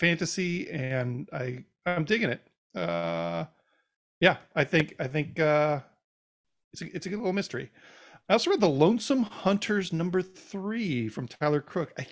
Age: 40-59